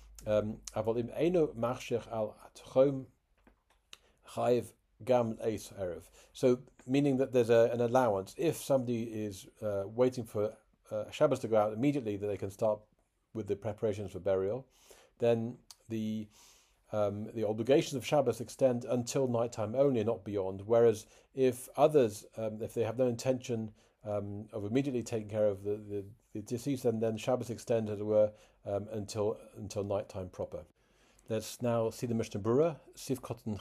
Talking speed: 145 wpm